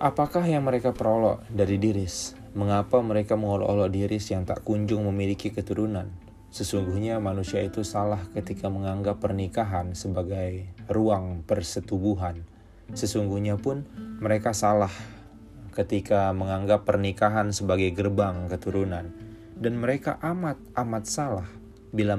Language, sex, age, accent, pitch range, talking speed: Indonesian, male, 20-39, native, 95-110 Hz, 110 wpm